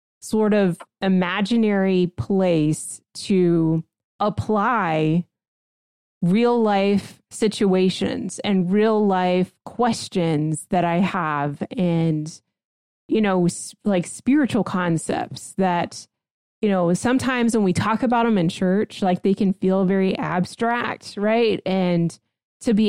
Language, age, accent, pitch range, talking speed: English, 30-49, American, 170-210 Hz, 115 wpm